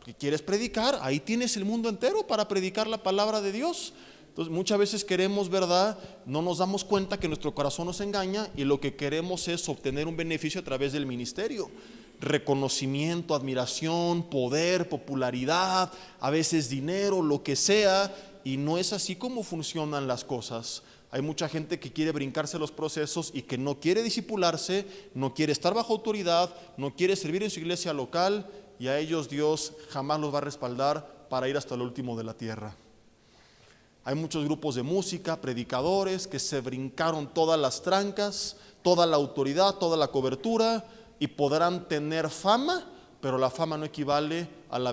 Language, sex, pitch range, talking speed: Spanish, male, 135-185 Hz, 170 wpm